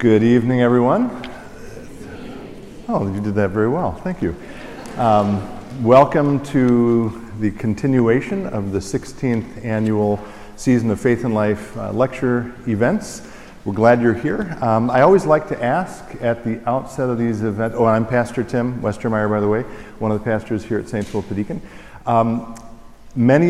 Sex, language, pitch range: male, English, 110-130 Hz